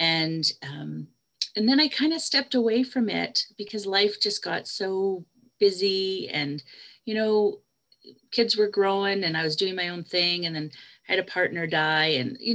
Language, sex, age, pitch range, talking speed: English, female, 40-59, 160-215 Hz, 185 wpm